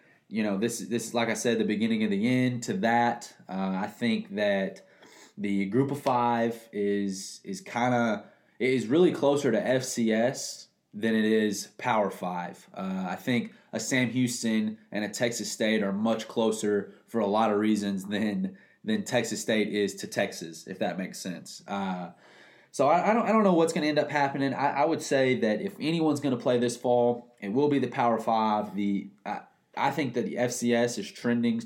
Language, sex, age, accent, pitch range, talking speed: English, male, 20-39, American, 110-140 Hz, 205 wpm